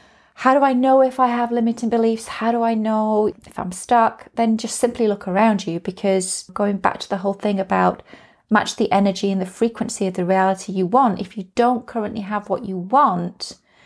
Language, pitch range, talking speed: English, 185-230 Hz, 210 wpm